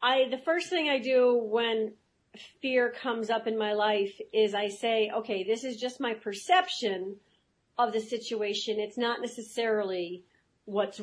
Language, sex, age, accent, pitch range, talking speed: English, female, 40-59, American, 205-255 Hz, 150 wpm